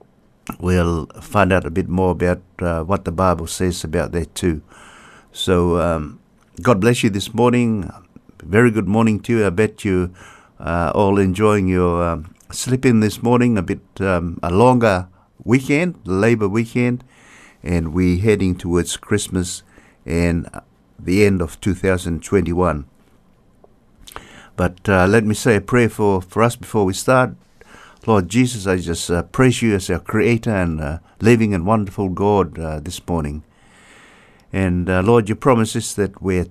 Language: English